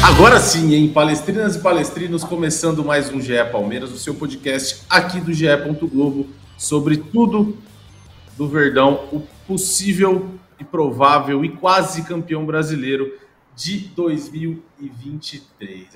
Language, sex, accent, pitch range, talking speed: Portuguese, male, Brazilian, 125-175 Hz, 115 wpm